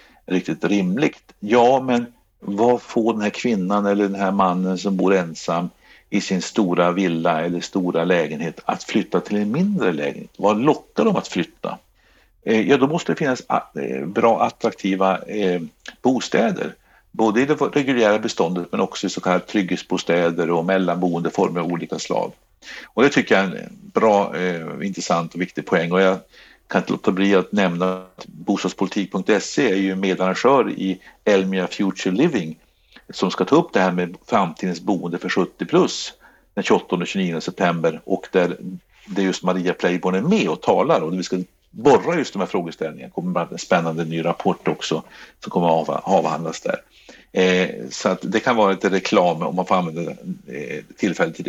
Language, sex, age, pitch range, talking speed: Swedish, male, 60-79, 90-100 Hz, 175 wpm